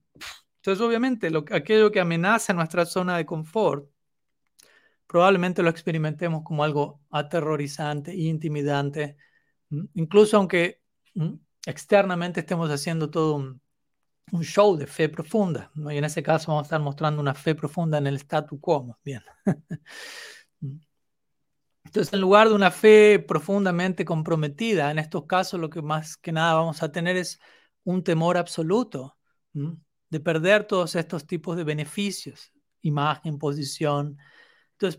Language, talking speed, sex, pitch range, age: Spanish, 145 wpm, male, 150-185 Hz, 40-59